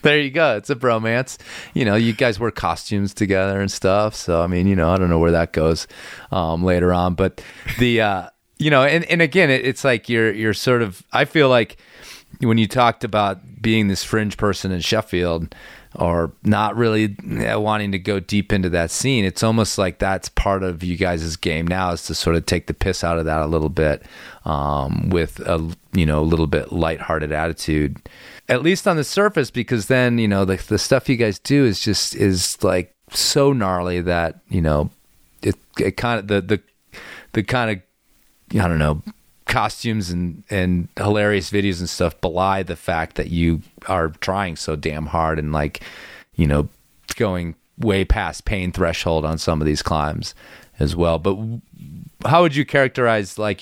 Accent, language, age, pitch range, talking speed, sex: American, English, 30-49, 85-110 Hz, 195 wpm, male